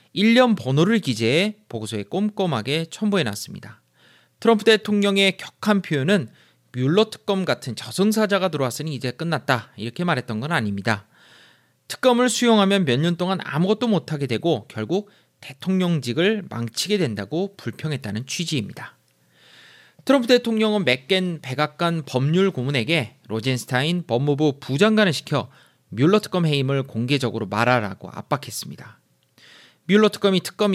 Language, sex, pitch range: Korean, male, 125-195 Hz